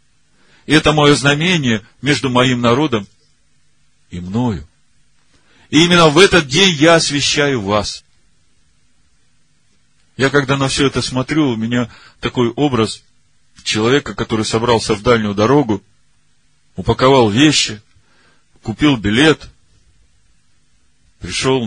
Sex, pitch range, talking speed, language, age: male, 105-140 Hz, 100 wpm, Russian, 40-59